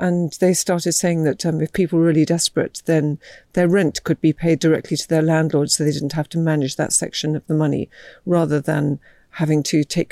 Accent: British